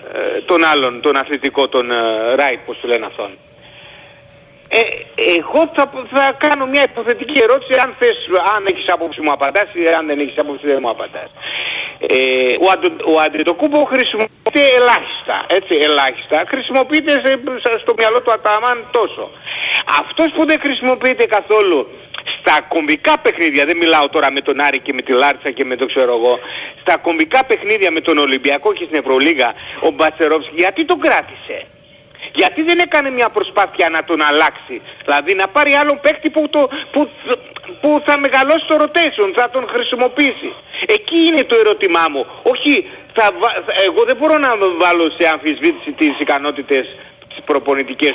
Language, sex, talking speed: Greek, male, 155 wpm